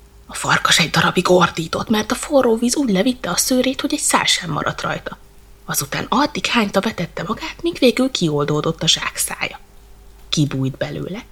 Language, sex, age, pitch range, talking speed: Hungarian, female, 20-39, 155-245 Hz, 160 wpm